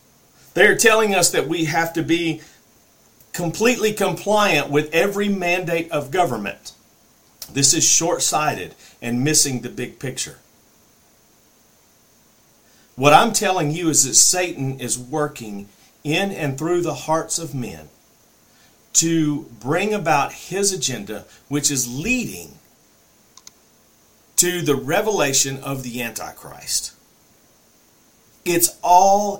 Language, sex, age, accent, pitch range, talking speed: English, male, 50-69, American, 145-195 Hz, 110 wpm